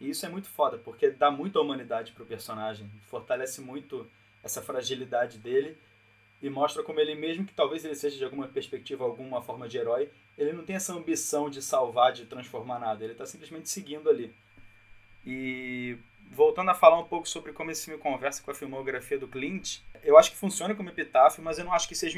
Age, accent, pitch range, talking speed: 20-39, Brazilian, 140-205 Hz, 205 wpm